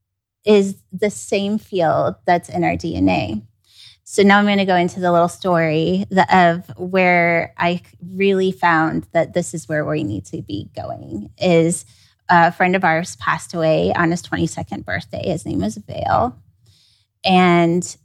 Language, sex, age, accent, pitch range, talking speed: English, female, 20-39, American, 155-190 Hz, 160 wpm